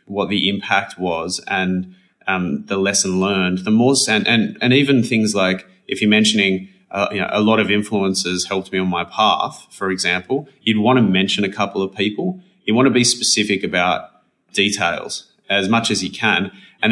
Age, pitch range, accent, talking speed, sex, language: 30-49, 95-110 Hz, Australian, 195 wpm, male, English